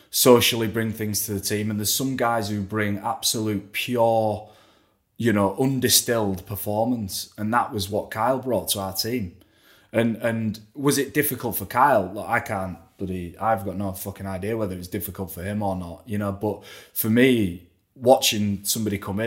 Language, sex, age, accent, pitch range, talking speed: English, male, 20-39, British, 100-120 Hz, 185 wpm